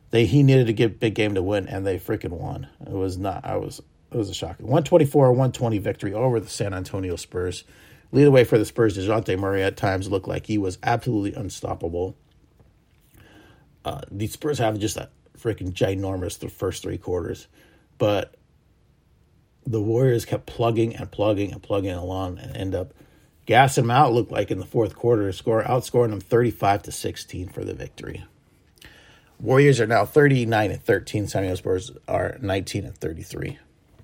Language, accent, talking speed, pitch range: English, American, 165 wpm, 100-125 Hz